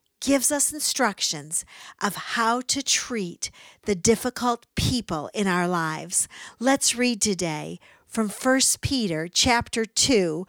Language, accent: English, American